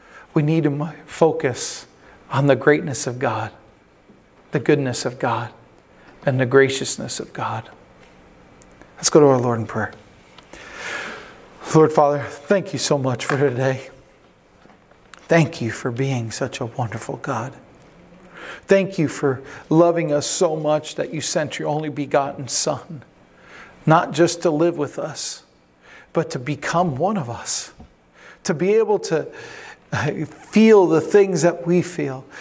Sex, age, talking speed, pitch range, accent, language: male, 40-59, 145 wpm, 135-175 Hz, American, English